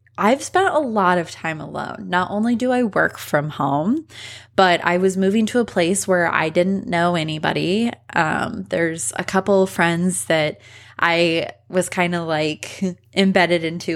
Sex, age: female, 20-39